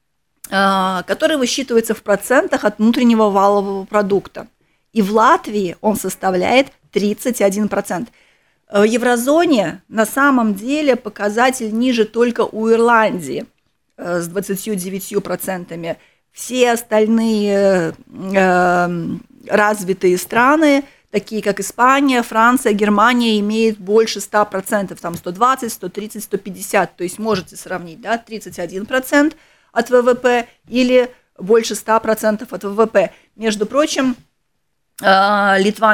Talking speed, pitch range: 95 wpm, 195-240 Hz